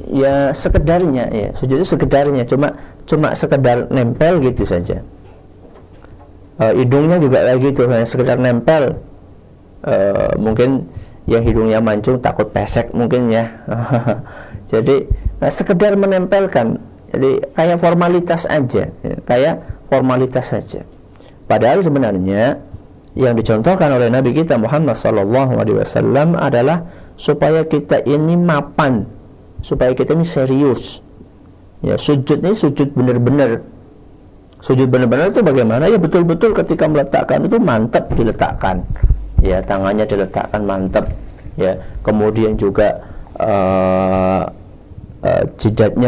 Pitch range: 105-145 Hz